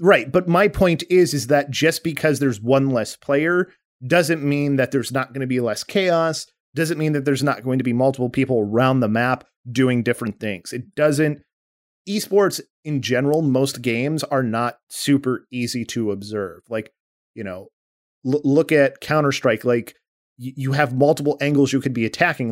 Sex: male